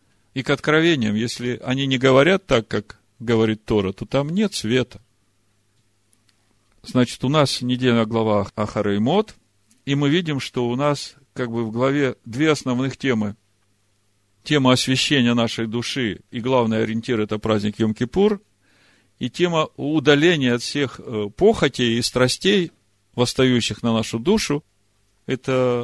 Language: Russian